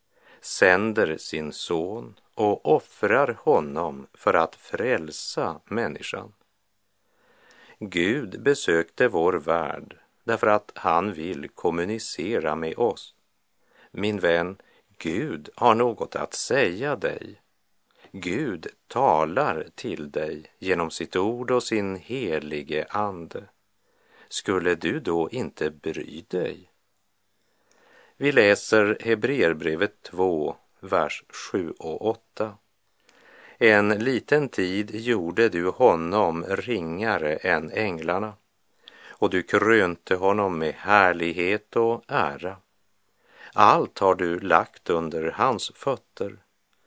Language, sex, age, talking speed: Dutch, male, 50-69, 100 wpm